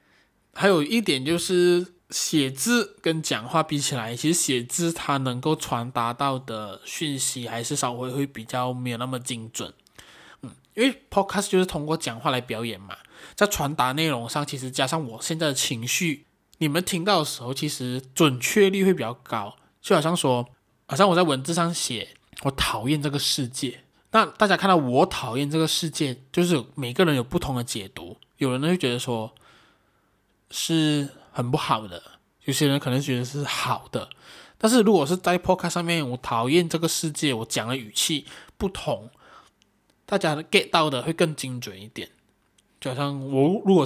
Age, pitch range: 20-39, 125-165 Hz